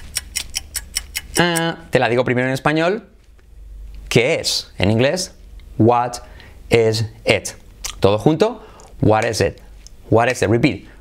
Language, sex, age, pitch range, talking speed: English, male, 30-49, 105-155 Hz, 125 wpm